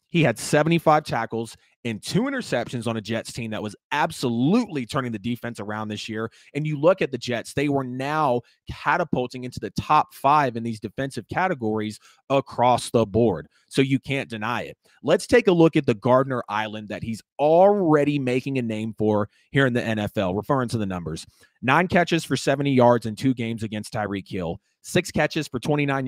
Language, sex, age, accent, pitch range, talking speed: English, male, 30-49, American, 110-140 Hz, 195 wpm